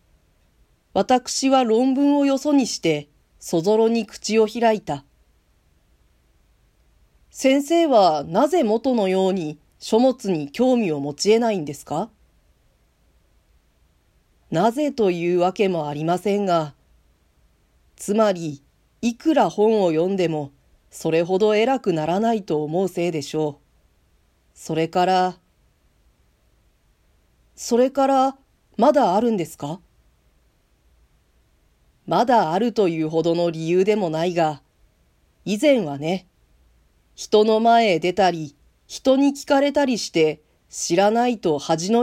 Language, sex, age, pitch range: Japanese, female, 40-59, 140-220 Hz